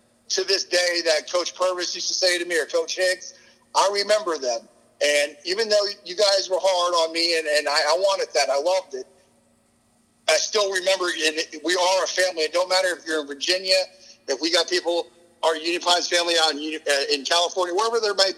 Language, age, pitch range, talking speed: English, 50-69, 150-185 Hz, 210 wpm